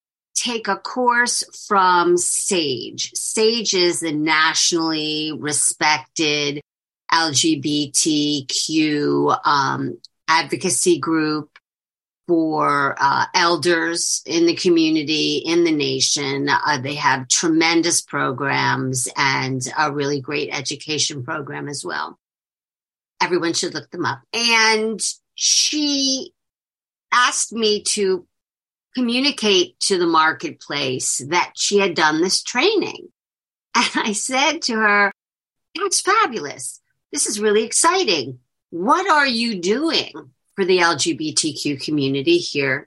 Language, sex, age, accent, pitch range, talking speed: English, female, 50-69, American, 150-220 Hz, 105 wpm